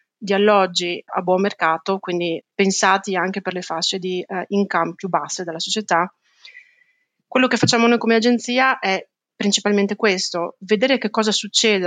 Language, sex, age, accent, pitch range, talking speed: Italian, female, 30-49, native, 175-205 Hz, 155 wpm